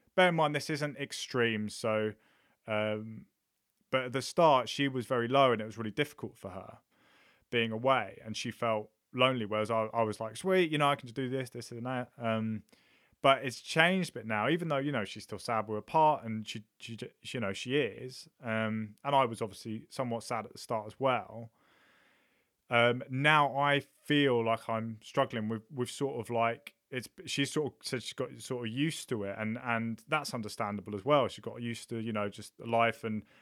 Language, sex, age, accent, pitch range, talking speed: English, male, 30-49, British, 110-140 Hz, 215 wpm